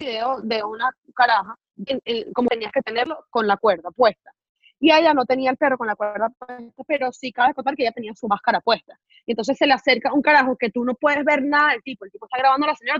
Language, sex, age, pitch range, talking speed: Spanish, female, 20-39, 230-290 Hz, 255 wpm